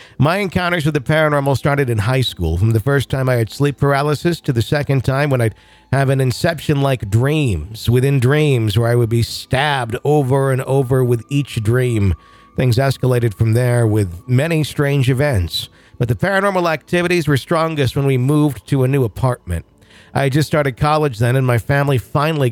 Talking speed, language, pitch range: 190 wpm, English, 115-145 Hz